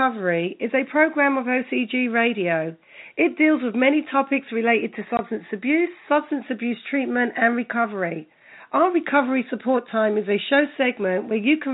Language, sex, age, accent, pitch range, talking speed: English, female, 40-59, British, 220-275 Hz, 160 wpm